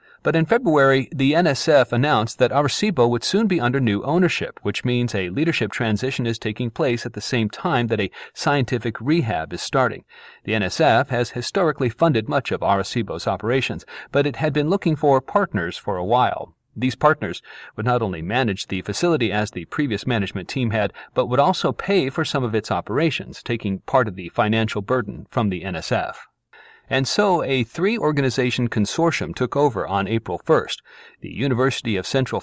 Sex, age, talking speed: male, 40-59, 180 wpm